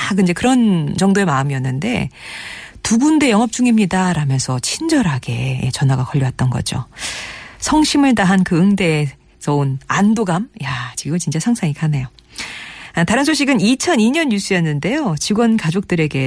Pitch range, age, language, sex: 150-225 Hz, 40-59, Korean, female